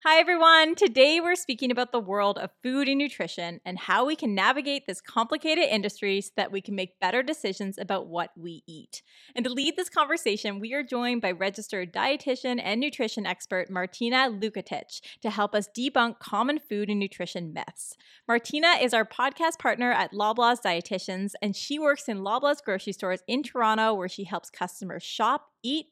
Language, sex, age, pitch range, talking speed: English, female, 20-39, 195-275 Hz, 185 wpm